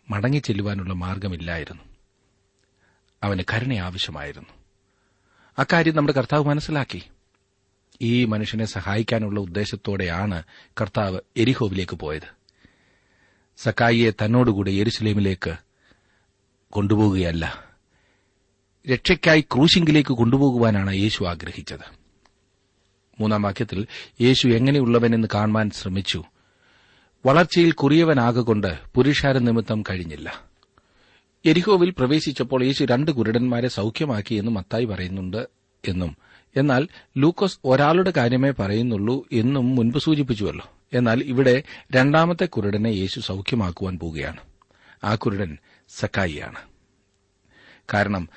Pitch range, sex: 95-125 Hz, male